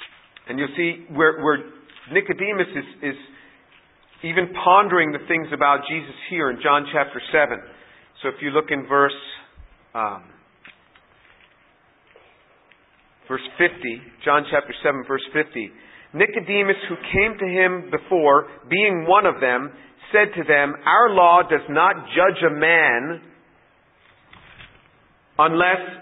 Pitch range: 150-210 Hz